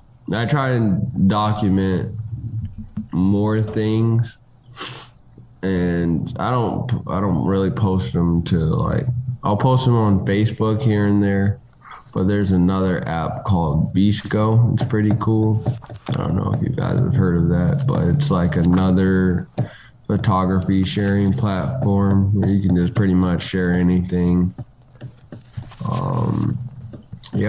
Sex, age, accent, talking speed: male, 20-39, American, 130 wpm